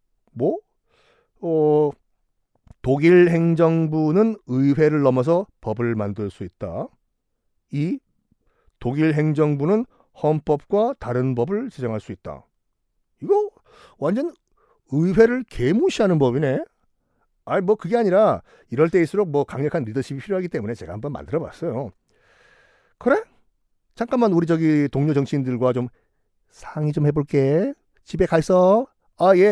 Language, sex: Korean, male